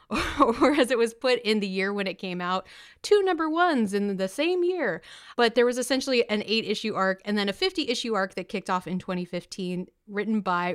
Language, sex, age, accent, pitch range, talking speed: English, female, 30-49, American, 185-250 Hz, 210 wpm